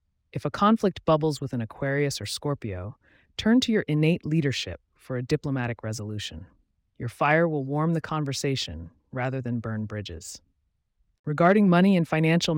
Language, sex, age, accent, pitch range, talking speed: English, female, 30-49, American, 110-160 Hz, 155 wpm